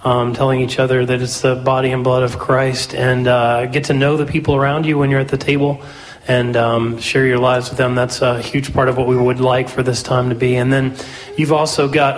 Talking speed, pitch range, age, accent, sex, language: 255 wpm, 125-145 Hz, 30-49, American, male, English